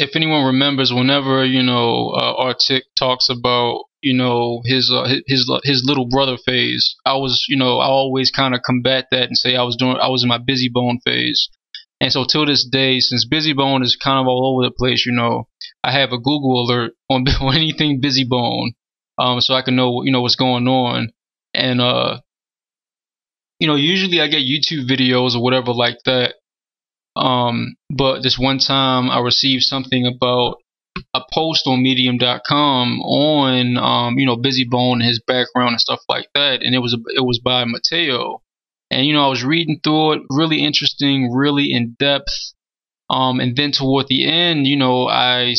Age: 20-39